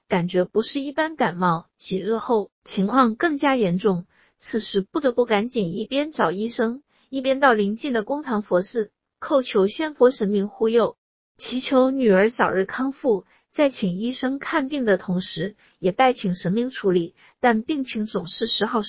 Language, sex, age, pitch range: Chinese, female, 50-69, 205-270 Hz